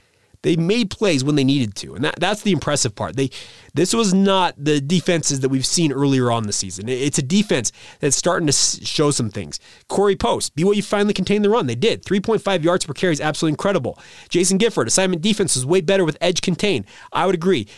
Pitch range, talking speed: 140-185 Hz, 215 wpm